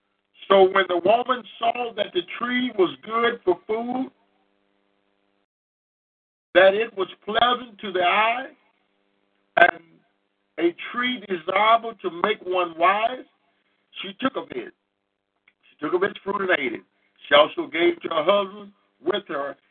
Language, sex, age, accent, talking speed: English, male, 50-69, American, 150 wpm